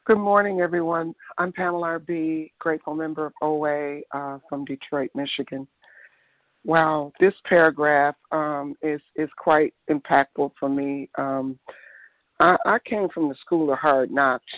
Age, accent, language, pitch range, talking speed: 60-79, American, English, 130-155 Hz, 140 wpm